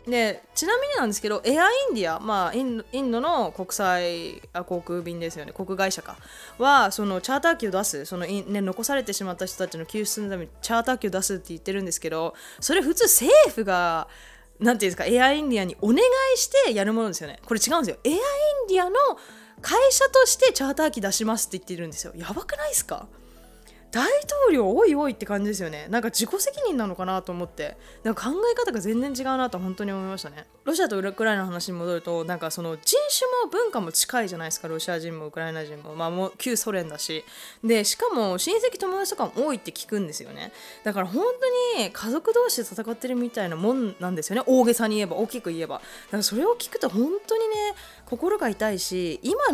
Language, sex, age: Japanese, female, 20-39